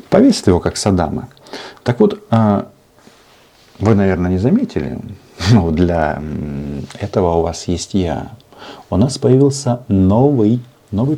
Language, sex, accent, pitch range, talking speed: Russian, male, native, 90-120 Hz, 120 wpm